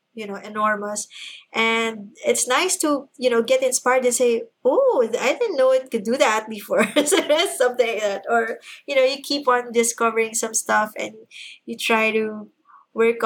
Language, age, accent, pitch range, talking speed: English, 20-39, Filipino, 215-250 Hz, 180 wpm